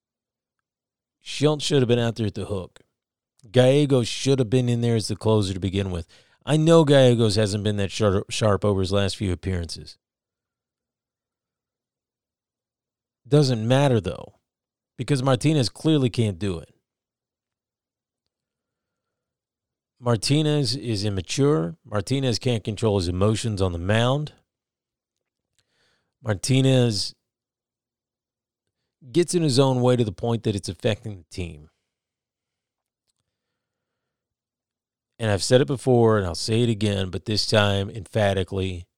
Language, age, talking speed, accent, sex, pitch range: English, 40-59, 125 wpm, American, male, 100-125 Hz